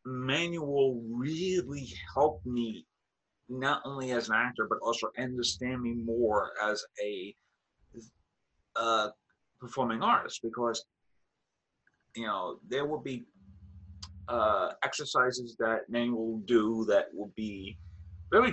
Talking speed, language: 110 wpm, English